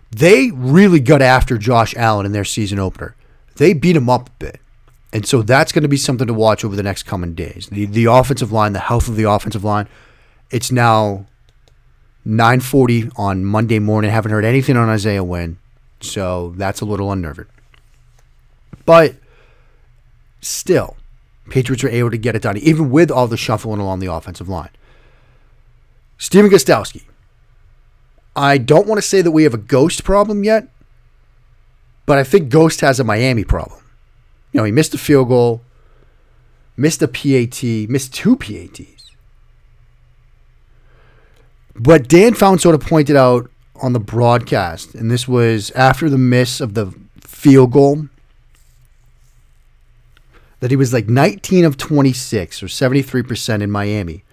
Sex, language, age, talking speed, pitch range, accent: male, English, 30-49, 155 wpm, 110-135 Hz, American